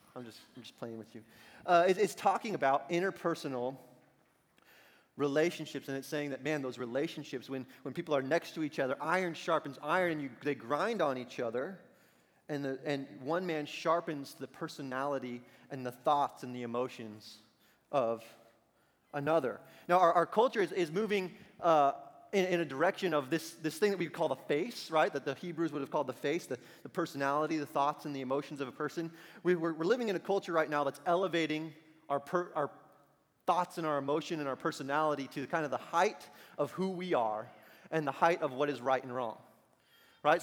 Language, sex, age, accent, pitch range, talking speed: English, male, 30-49, American, 135-170 Hz, 200 wpm